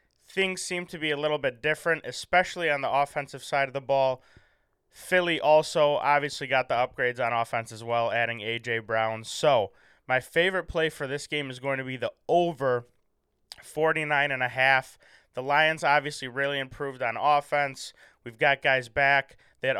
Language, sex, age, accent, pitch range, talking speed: English, male, 20-39, American, 125-150 Hz, 165 wpm